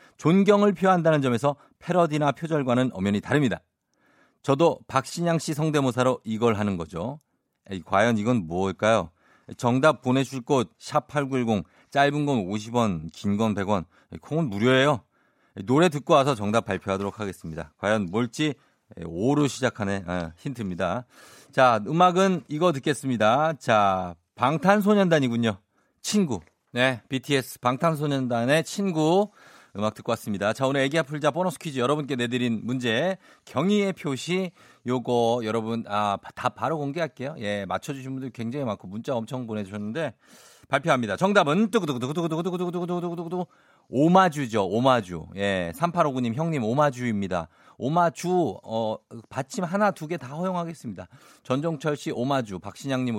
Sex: male